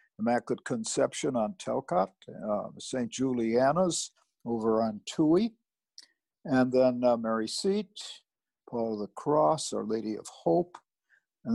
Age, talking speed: 60-79, 120 wpm